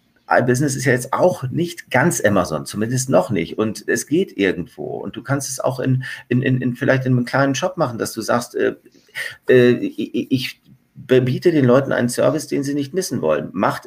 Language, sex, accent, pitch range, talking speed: German, male, German, 125-150 Hz, 185 wpm